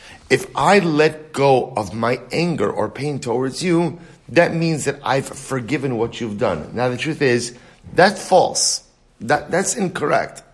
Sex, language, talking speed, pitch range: male, English, 160 wpm, 120-170 Hz